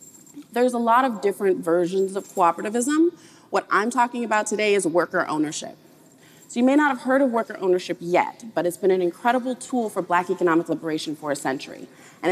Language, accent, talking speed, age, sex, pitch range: French, American, 195 wpm, 30-49, female, 170-230 Hz